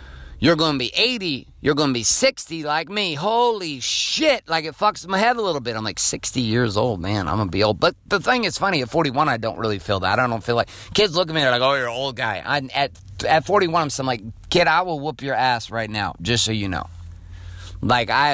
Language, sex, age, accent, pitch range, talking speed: English, male, 30-49, American, 105-145 Hz, 260 wpm